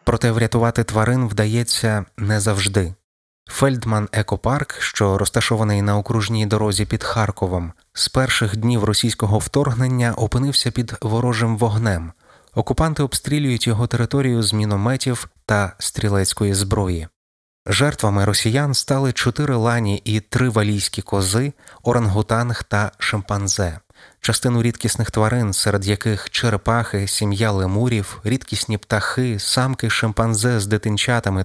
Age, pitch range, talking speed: 20-39, 100-120 Hz, 110 wpm